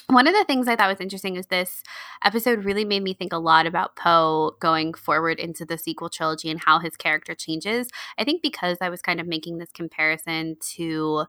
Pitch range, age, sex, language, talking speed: 165-210 Hz, 20-39, female, English, 220 wpm